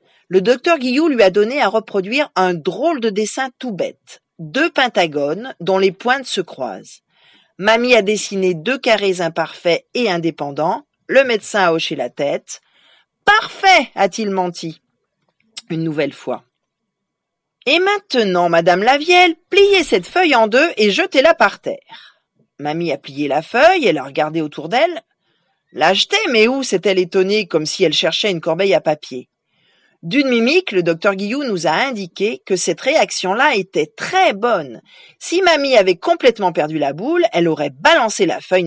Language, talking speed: French, 170 wpm